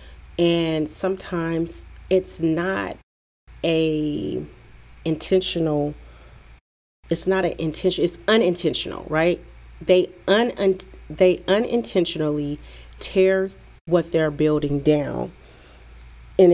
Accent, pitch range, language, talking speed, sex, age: American, 145-175 Hz, English, 80 wpm, female, 40-59